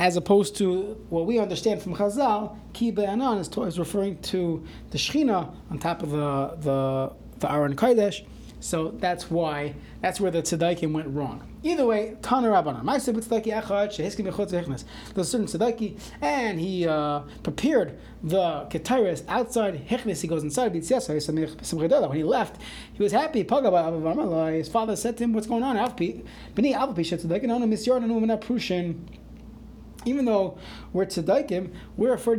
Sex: male